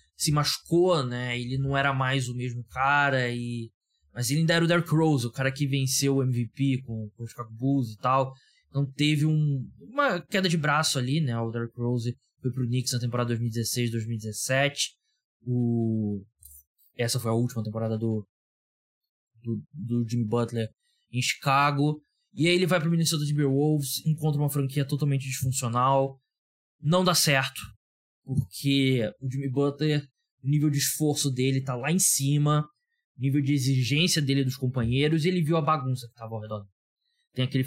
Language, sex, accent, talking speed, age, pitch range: Portuguese, male, Brazilian, 175 wpm, 20-39, 120-150 Hz